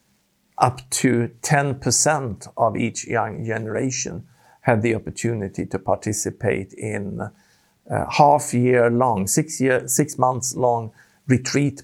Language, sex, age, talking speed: Finnish, male, 50-69, 110 wpm